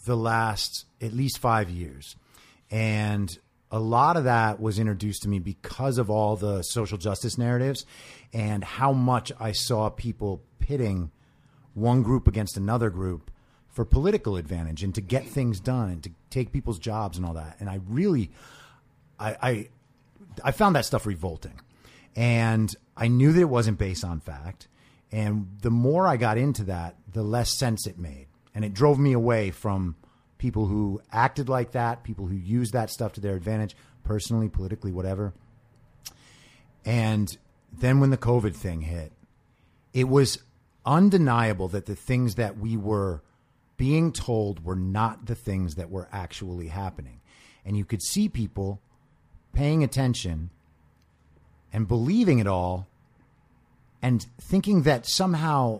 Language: English